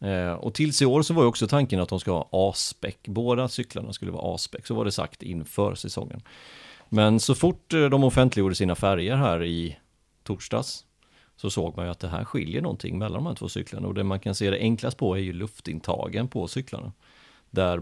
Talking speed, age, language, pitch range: 205 wpm, 30-49, Swedish, 85-120 Hz